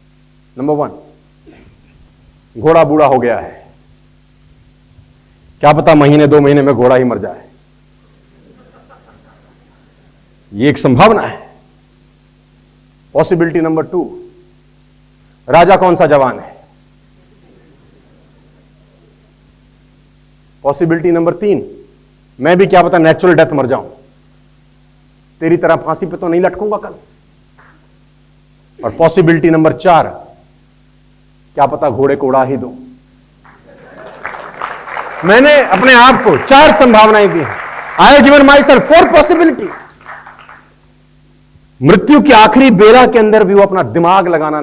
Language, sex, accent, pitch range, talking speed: Hindi, male, native, 135-200 Hz, 115 wpm